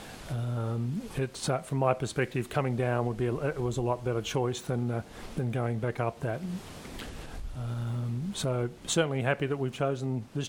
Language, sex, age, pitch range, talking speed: English, male, 40-59, 125-150 Hz, 185 wpm